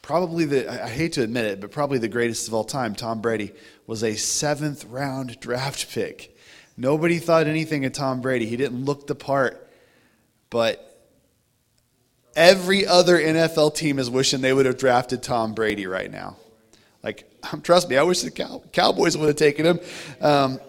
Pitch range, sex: 105-135 Hz, male